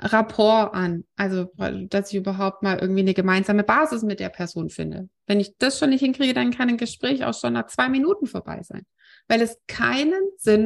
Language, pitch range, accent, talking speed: German, 195-260 Hz, German, 205 wpm